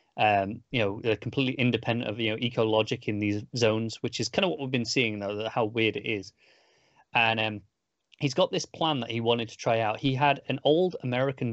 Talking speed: 230 wpm